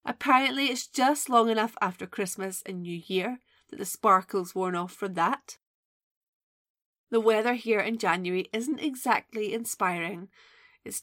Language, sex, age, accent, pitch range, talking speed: English, female, 30-49, British, 190-240 Hz, 140 wpm